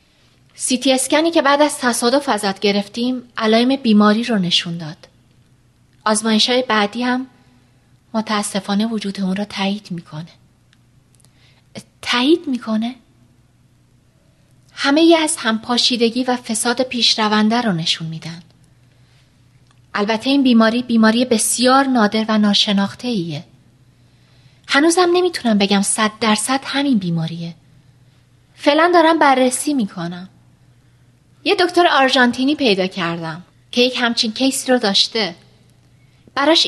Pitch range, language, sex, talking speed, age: 165-255 Hz, Persian, female, 120 wpm, 30-49